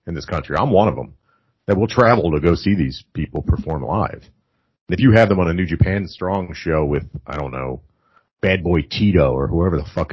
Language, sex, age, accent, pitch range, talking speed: English, male, 40-59, American, 80-105 Hz, 230 wpm